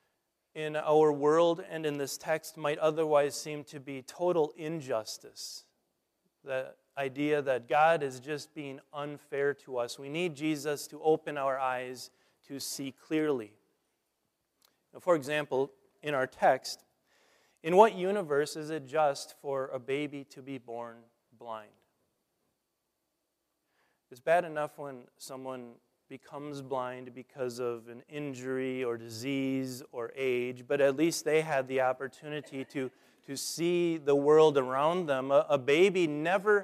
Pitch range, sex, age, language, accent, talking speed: 130-160 Hz, male, 30-49, English, American, 140 wpm